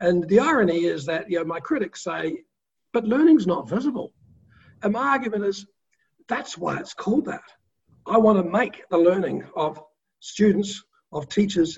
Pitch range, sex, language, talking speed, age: 170-225 Hz, male, English, 170 wpm, 50-69